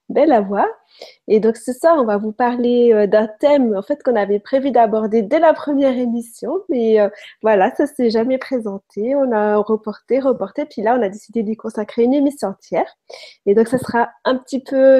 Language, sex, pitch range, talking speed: French, female, 215-260 Hz, 200 wpm